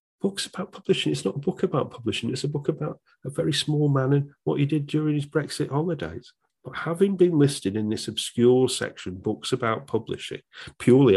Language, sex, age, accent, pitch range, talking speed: English, male, 40-59, British, 105-145 Hz, 200 wpm